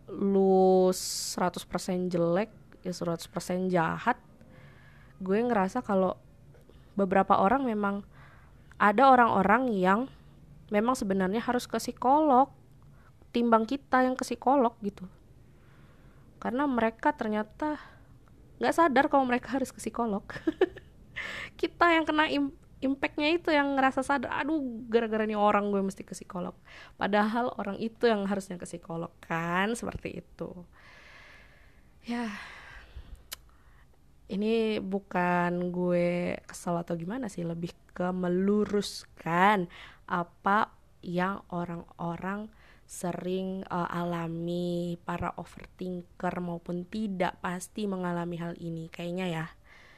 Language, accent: Indonesian, native